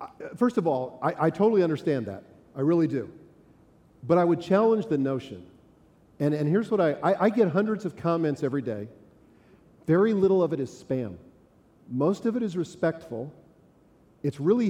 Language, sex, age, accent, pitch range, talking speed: English, male, 40-59, American, 140-185 Hz, 175 wpm